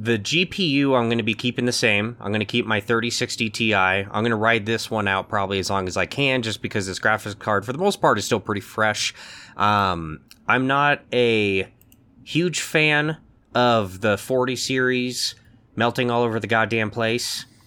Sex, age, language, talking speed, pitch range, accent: male, 20-39, English, 195 wpm, 100-125 Hz, American